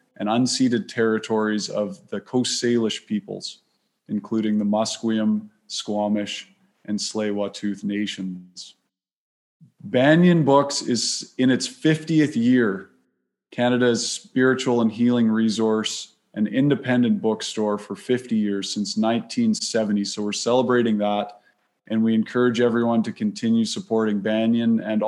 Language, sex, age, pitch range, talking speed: English, male, 20-39, 105-130 Hz, 115 wpm